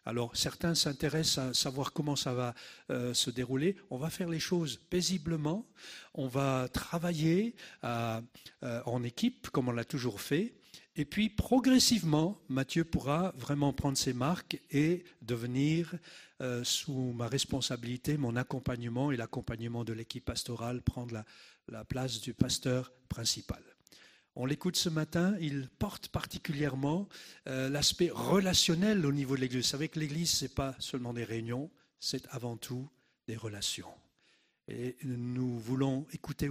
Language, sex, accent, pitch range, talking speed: French, male, French, 125-160 Hz, 150 wpm